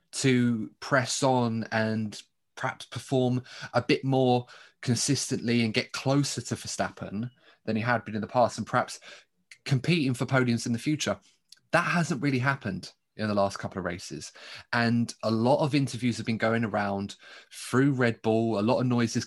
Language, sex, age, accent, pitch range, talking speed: English, male, 20-39, British, 110-130 Hz, 175 wpm